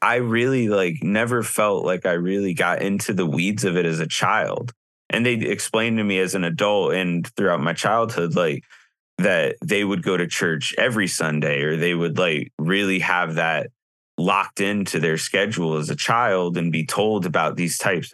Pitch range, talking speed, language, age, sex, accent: 95-130 Hz, 190 wpm, English, 20-39, male, American